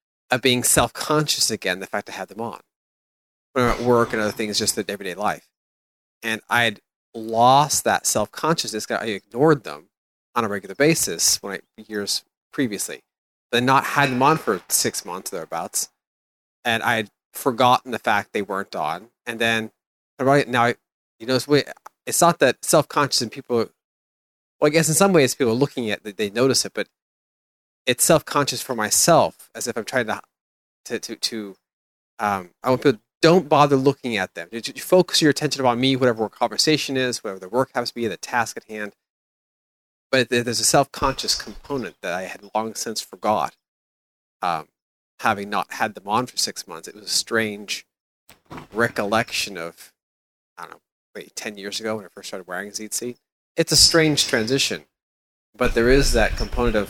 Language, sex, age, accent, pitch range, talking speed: English, male, 30-49, American, 100-130 Hz, 185 wpm